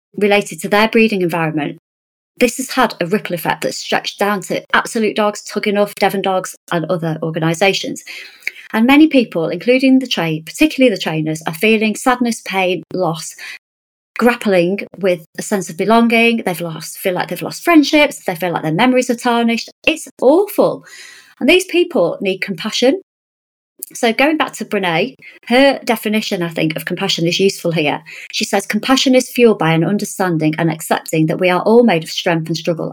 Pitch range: 170-235 Hz